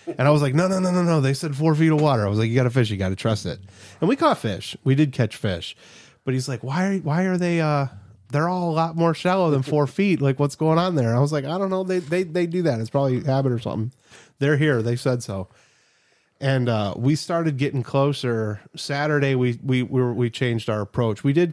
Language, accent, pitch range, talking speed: English, American, 105-140 Hz, 275 wpm